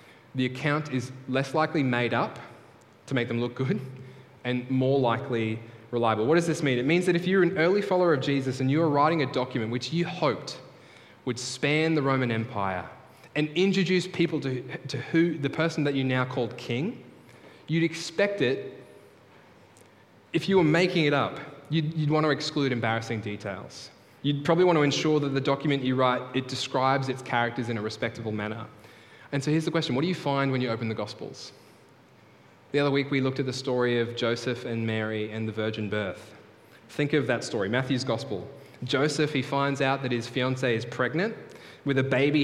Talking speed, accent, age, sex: 195 wpm, Australian, 10-29, male